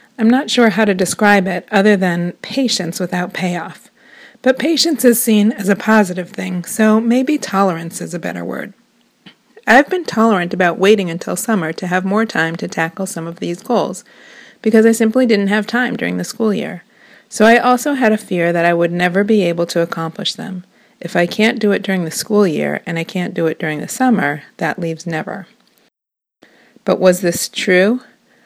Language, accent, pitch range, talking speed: English, American, 180-235 Hz, 195 wpm